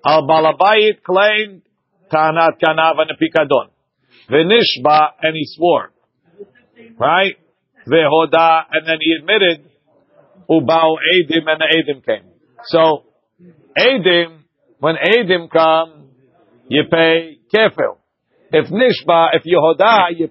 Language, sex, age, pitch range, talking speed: English, male, 50-69, 160-200 Hz, 105 wpm